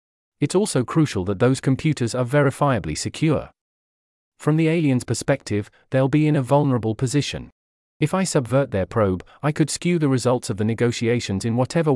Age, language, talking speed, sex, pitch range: 40-59, English, 170 wpm, male, 110-140 Hz